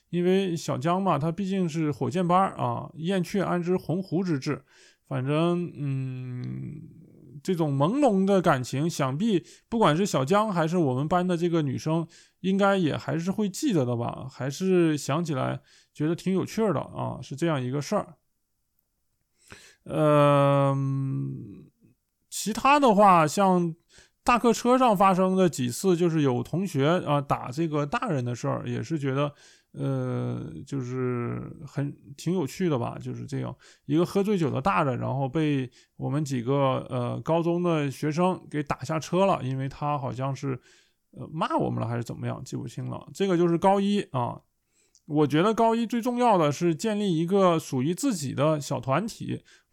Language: Chinese